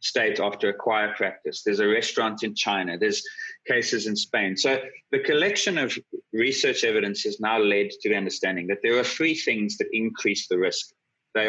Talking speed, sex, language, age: 190 wpm, male, English, 30-49